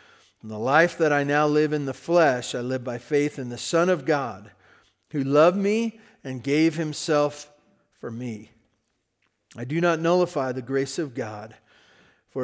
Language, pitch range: English, 125-150 Hz